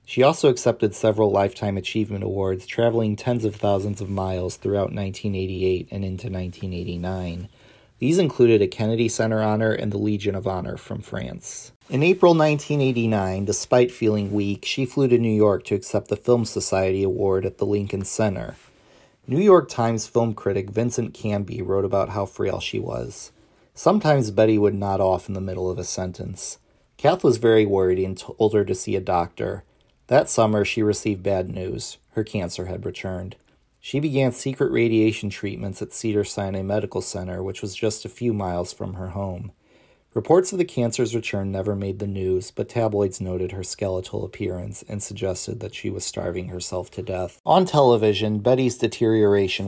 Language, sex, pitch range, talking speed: English, male, 95-110 Hz, 175 wpm